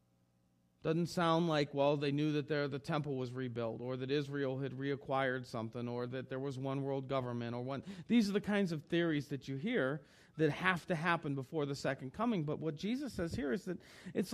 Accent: American